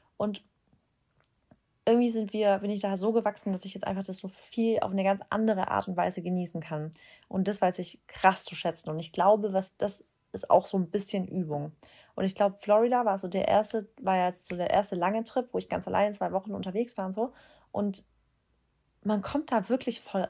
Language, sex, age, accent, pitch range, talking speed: German, female, 30-49, German, 190-220 Hz, 220 wpm